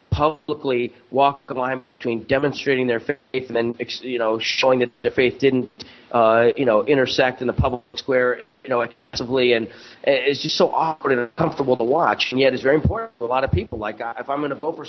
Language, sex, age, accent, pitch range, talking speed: English, male, 30-49, American, 125-145 Hz, 220 wpm